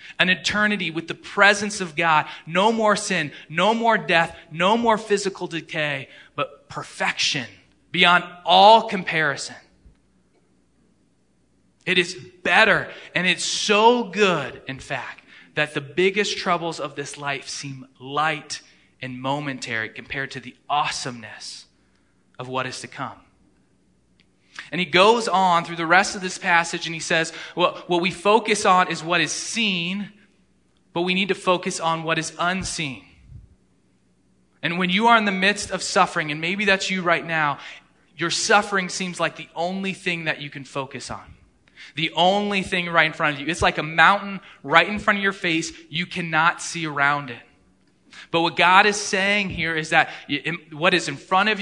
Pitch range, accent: 155-195 Hz, American